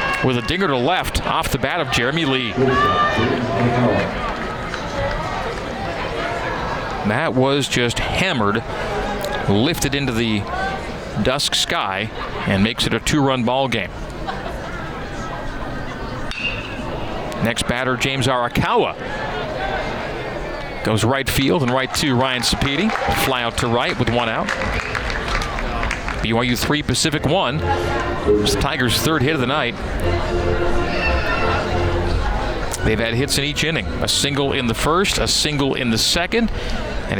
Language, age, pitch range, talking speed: English, 40-59, 110-140 Hz, 120 wpm